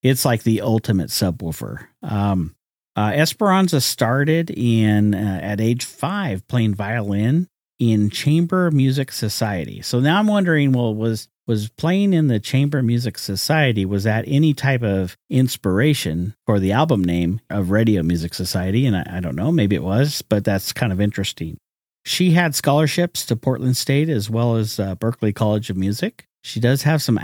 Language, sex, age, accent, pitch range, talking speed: English, male, 50-69, American, 100-135 Hz, 170 wpm